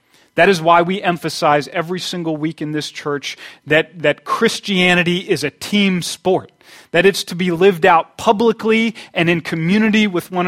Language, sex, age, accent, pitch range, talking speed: English, male, 30-49, American, 150-190 Hz, 170 wpm